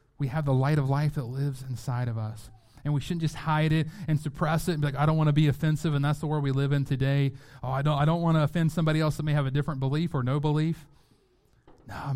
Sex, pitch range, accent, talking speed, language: male, 125-150 Hz, American, 285 wpm, English